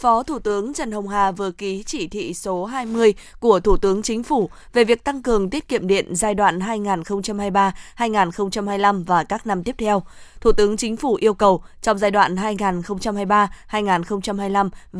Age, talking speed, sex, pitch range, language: 20-39, 170 wpm, female, 190-220 Hz, Vietnamese